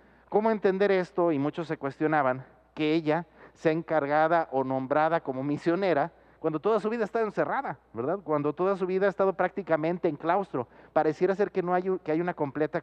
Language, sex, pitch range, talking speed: Spanish, male, 155-195 Hz, 185 wpm